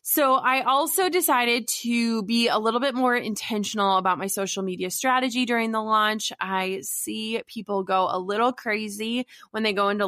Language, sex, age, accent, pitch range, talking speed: English, female, 20-39, American, 195-240 Hz, 180 wpm